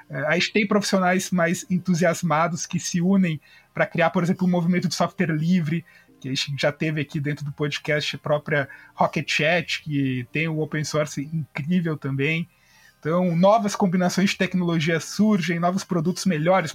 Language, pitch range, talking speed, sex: Portuguese, 155-190 Hz, 170 wpm, male